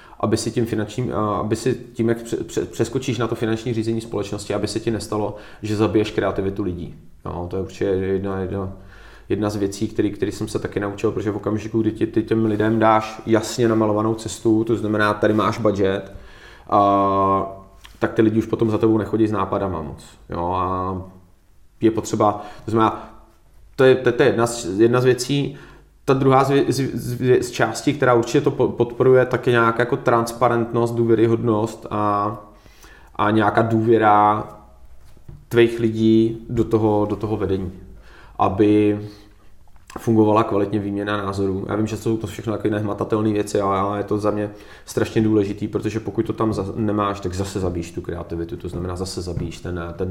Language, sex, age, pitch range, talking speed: Czech, male, 30-49, 95-115 Hz, 175 wpm